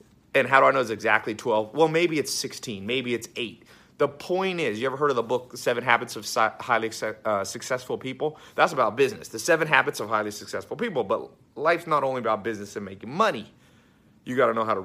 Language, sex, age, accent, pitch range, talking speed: English, male, 30-49, American, 110-155 Hz, 220 wpm